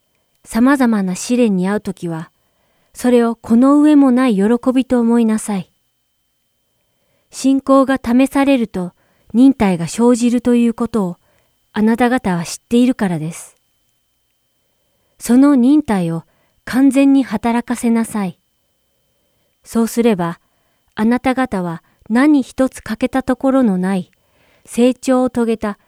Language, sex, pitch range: Japanese, female, 170-250 Hz